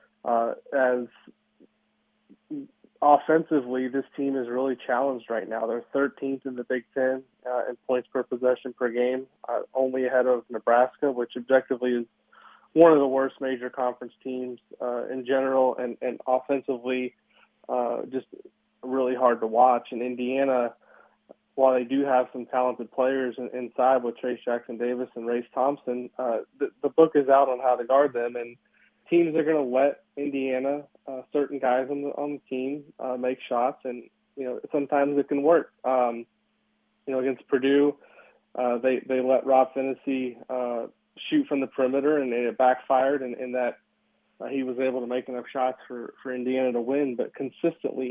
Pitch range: 125-135 Hz